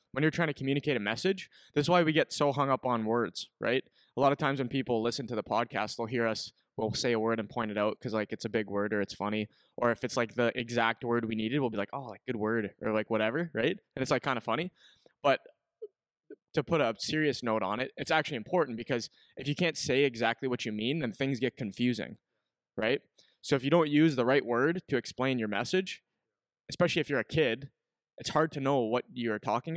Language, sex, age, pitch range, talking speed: English, male, 20-39, 115-135 Hz, 245 wpm